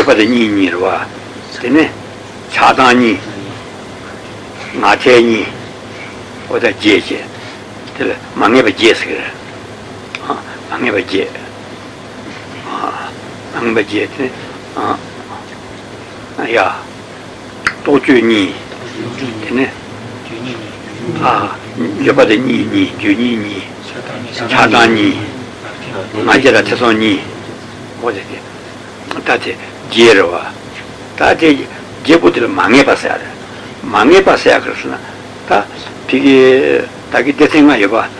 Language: Italian